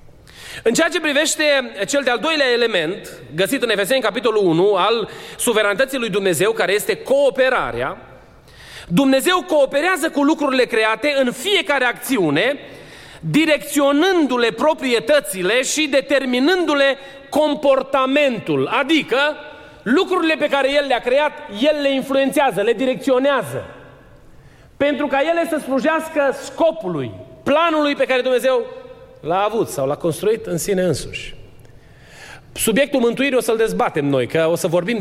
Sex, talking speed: male, 125 wpm